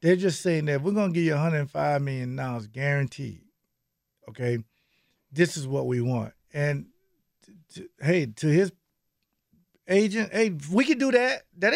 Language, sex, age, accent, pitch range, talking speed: English, male, 50-69, American, 140-210 Hz, 150 wpm